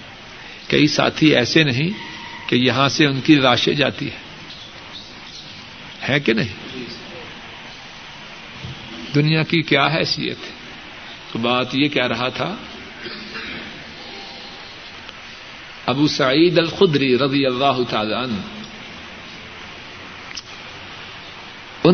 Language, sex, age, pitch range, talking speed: Urdu, male, 60-79, 130-170 Hz, 85 wpm